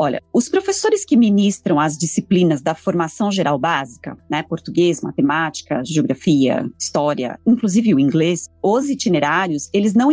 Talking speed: 135 wpm